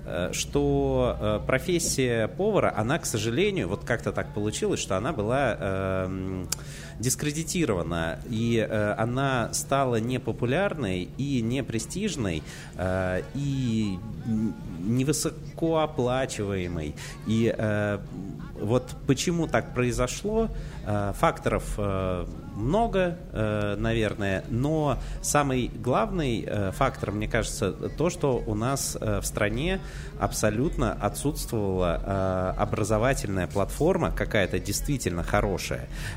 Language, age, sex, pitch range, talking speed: Russian, 30-49, male, 95-135 Hz, 90 wpm